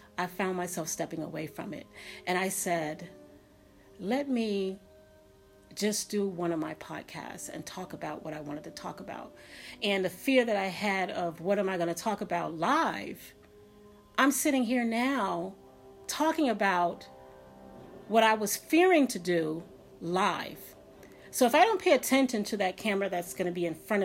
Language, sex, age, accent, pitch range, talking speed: English, female, 40-59, American, 170-230 Hz, 175 wpm